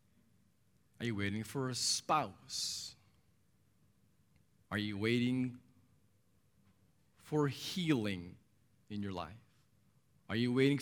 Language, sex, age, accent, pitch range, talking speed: English, male, 40-59, American, 110-145 Hz, 95 wpm